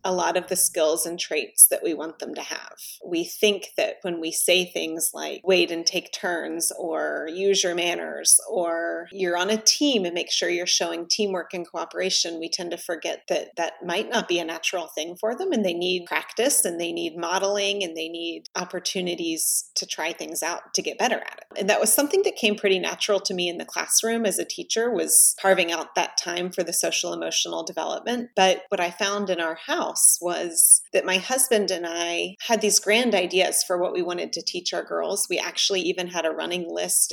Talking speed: 220 wpm